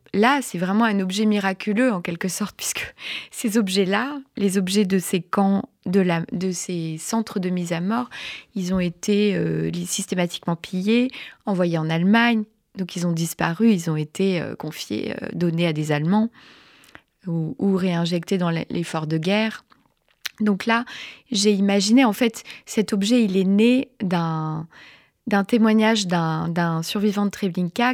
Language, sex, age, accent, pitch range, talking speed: French, female, 20-39, French, 180-225 Hz, 160 wpm